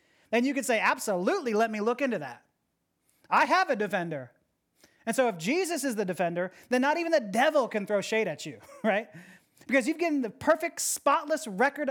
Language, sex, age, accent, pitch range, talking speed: English, male, 30-49, American, 210-275 Hz, 195 wpm